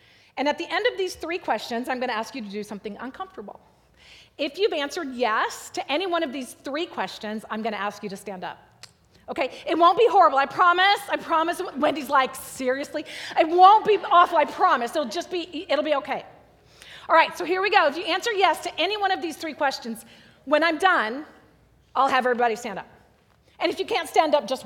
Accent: American